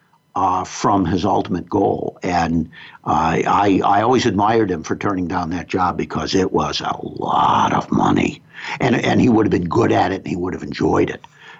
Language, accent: English, American